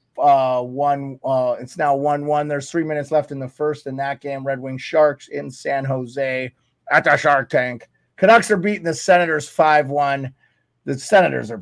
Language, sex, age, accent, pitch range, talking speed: English, male, 30-49, American, 140-185 Hz, 180 wpm